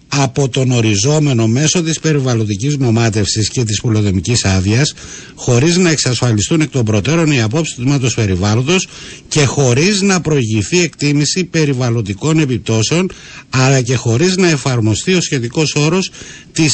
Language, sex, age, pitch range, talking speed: Greek, male, 60-79, 115-165 Hz, 135 wpm